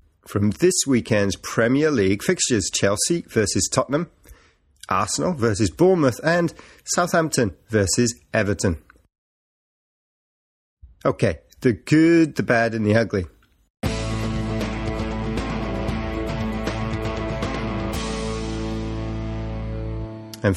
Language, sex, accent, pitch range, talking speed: English, male, British, 105-135 Hz, 75 wpm